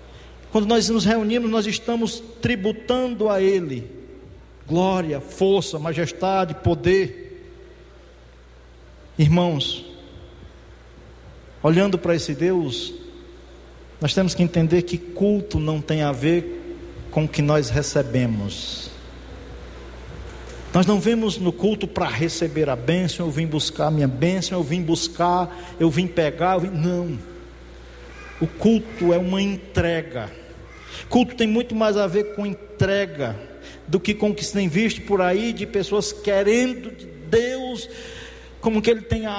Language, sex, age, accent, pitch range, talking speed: Portuguese, male, 50-69, Brazilian, 125-205 Hz, 135 wpm